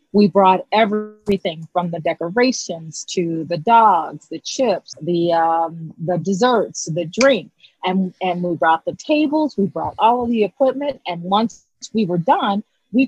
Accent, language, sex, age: American, English, female, 30-49